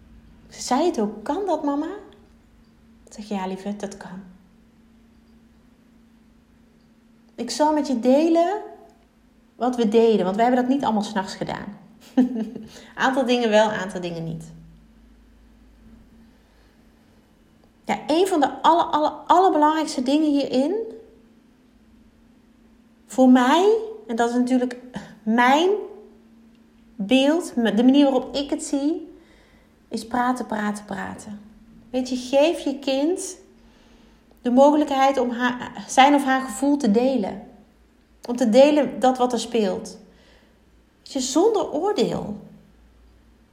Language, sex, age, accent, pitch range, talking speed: Dutch, female, 30-49, Dutch, 225-285 Hz, 120 wpm